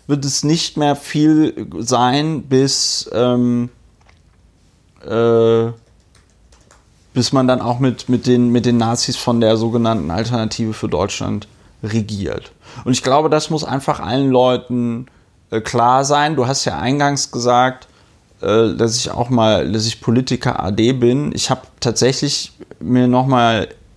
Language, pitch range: German, 115-130 Hz